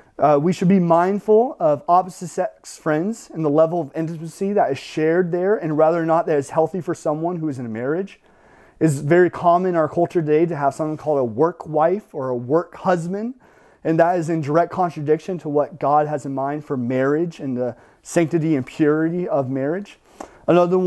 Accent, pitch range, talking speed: American, 145-170 Hz, 205 wpm